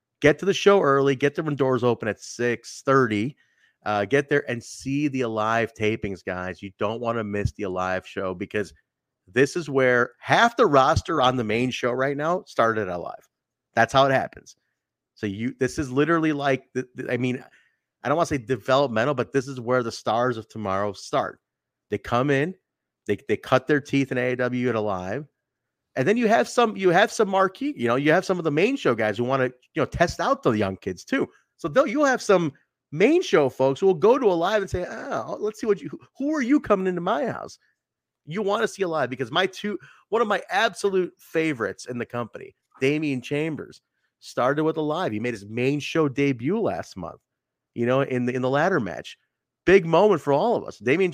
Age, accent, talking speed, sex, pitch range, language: 30-49, American, 220 wpm, male, 120-160 Hz, English